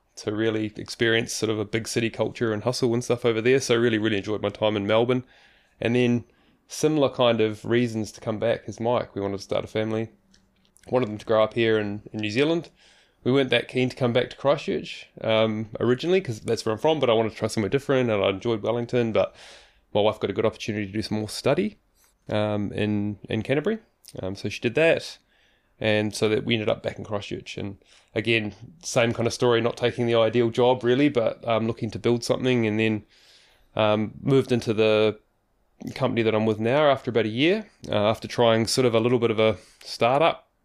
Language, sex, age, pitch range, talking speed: English, male, 20-39, 110-120 Hz, 225 wpm